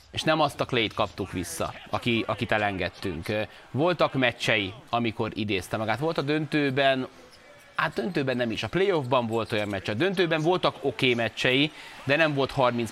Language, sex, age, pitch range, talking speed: Hungarian, male, 30-49, 115-135 Hz, 170 wpm